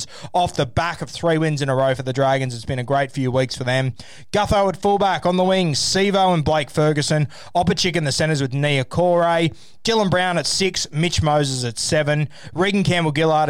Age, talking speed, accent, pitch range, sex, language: 20-39, 210 wpm, Australian, 140-175 Hz, male, English